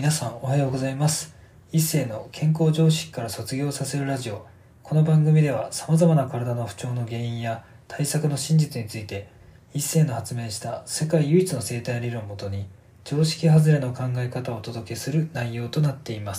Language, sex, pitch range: Japanese, male, 115-140 Hz